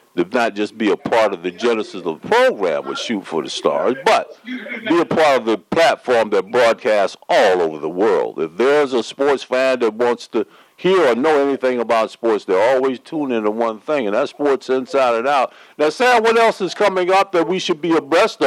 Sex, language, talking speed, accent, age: male, English, 220 wpm, American, 50-69